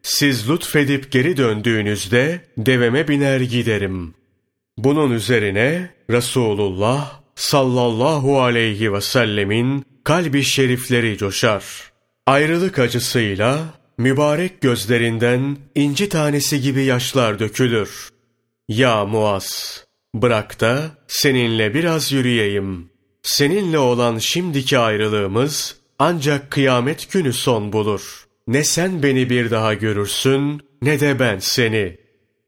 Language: Turkish